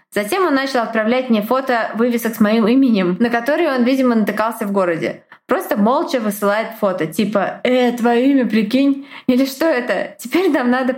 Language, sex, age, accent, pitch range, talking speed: Russian, female, 20-39, native, 215-265 Hz, 175 wpm